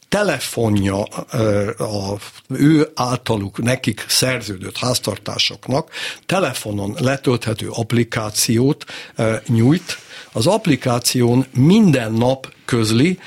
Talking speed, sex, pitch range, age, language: 70 wpm, male, 115-155 Hz, 60-79, Hungarian